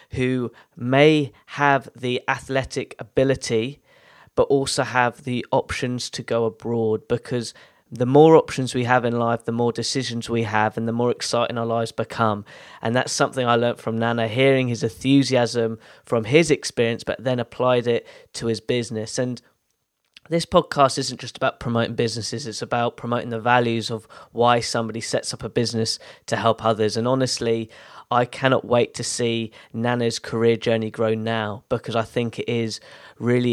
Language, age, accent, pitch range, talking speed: English, 20-39, British, 115-130 Hz, 170 wpm